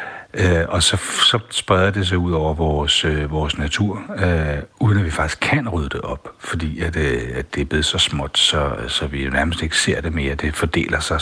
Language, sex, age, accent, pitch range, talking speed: Danish, male, 60-79, native, 80-105 Hz, 215 wpm